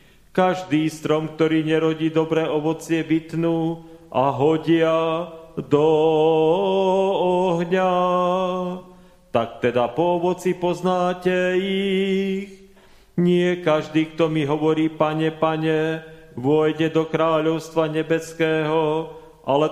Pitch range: 155-180 Hz